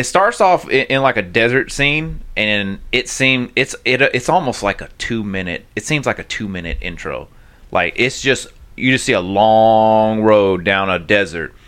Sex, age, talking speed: male, 30-49, 195 wpm